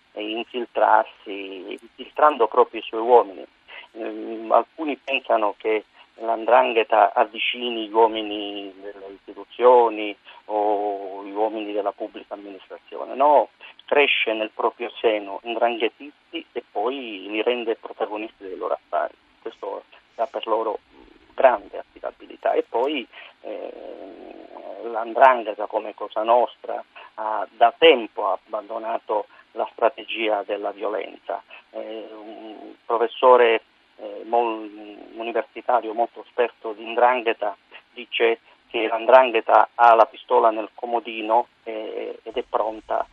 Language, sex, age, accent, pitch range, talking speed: Italian, male, 40-59, native, 110-135 Hz, 115 wpm